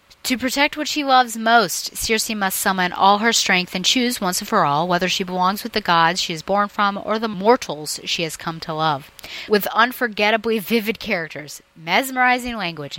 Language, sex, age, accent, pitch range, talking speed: English, female, 30-49, American, 160-210 Hz, 195 wpm